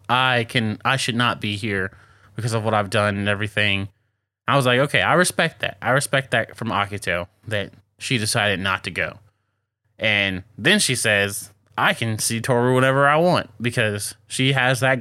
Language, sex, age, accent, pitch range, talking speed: English, male, 20-39, American, 105-125 Hz, 190 wpm